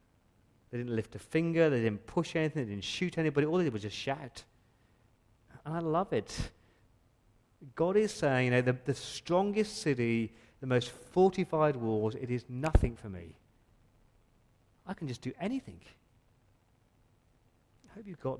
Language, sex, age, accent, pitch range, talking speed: English, male, 40-59, British, 110-130 Hz, 165 wpm